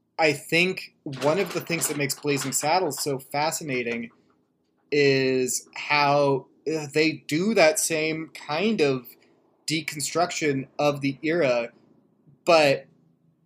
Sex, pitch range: male, 135-165 Hz